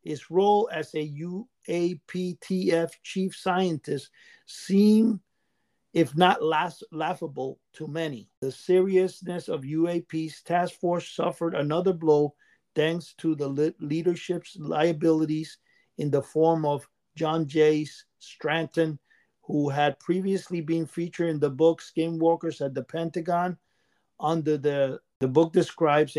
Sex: male